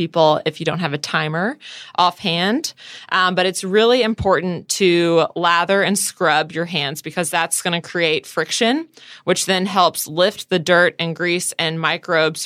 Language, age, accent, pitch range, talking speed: English, 20-39, American, 160-190 Hz, 170 wpm